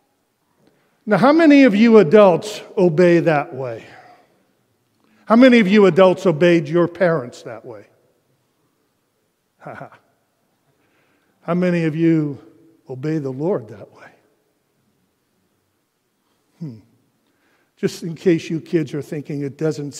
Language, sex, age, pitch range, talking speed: English, male, 50-69, 135-175 Hz, 115 wpm